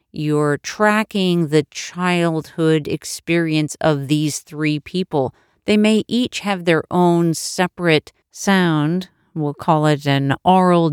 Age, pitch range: 40-59, 155-195 Hz